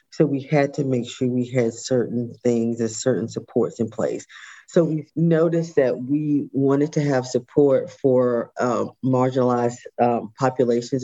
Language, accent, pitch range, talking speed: English, American, 125-150 Hz, 160 wpm